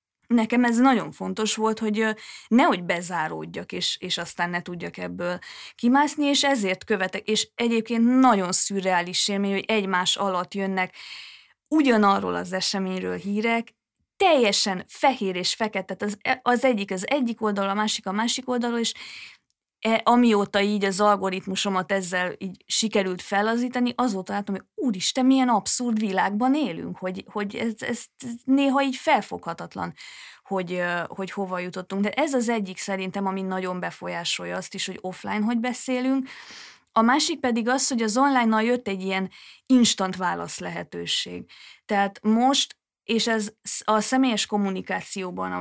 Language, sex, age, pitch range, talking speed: Hungarian, female, 20-39, 190-240 Hz, 145 wpm